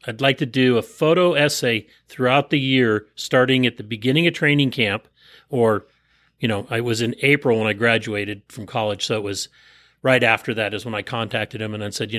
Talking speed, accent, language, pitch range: 215 wpm, American, English, 115-135 Hz